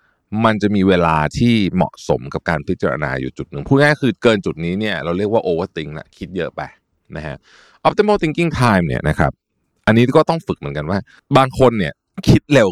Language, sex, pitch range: Thai, male, 90-125 Hz